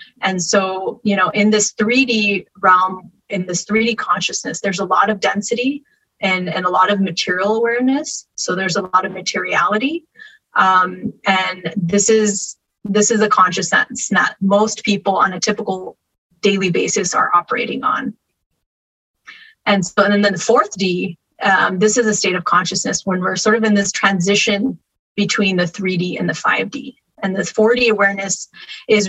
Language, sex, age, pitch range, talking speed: English, female, 20-39, 190-225 Hz, 170 wpm